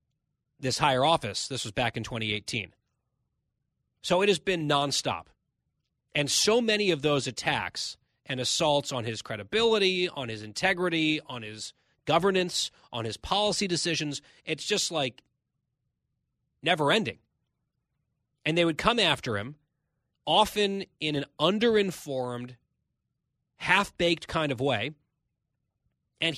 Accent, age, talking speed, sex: American, 30-49, 125 wpm, male